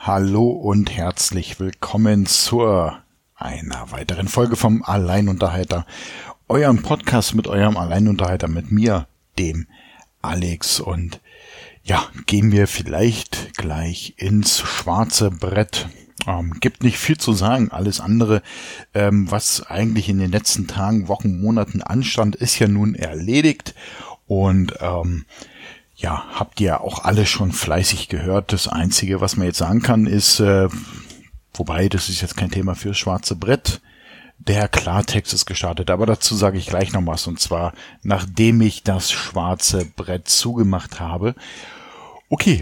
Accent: German